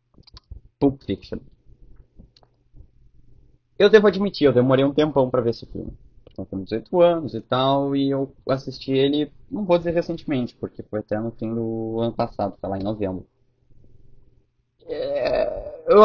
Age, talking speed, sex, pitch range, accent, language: 20-39, 145 wpm, male, 110-145 Hz, Brazilian, Portuguese